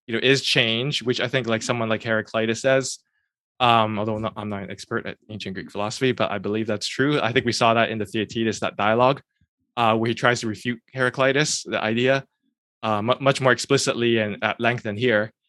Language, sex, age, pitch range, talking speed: English, male, 20-39, 115-135 Hz, 220 wpm